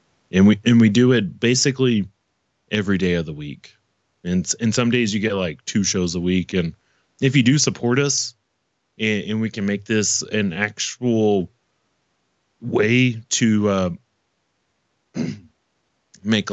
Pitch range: 95-120 Hz